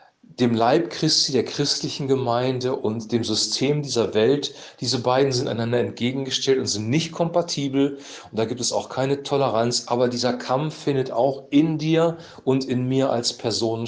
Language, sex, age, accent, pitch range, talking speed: German, male, 40-59, German, 120-140 Hz, 170 wpm